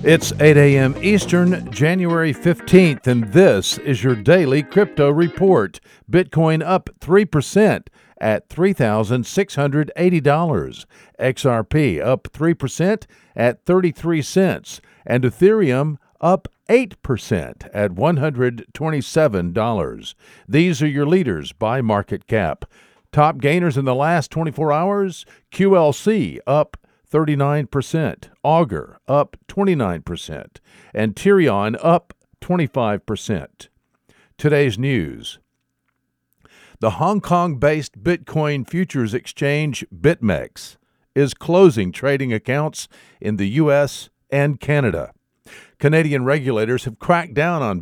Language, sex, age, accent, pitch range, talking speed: English, male, 50-69, American, 125-170 Hz, 95 wpm